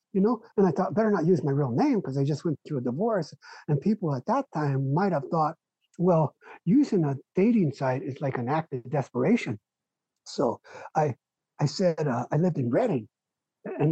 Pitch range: 135-190 Hz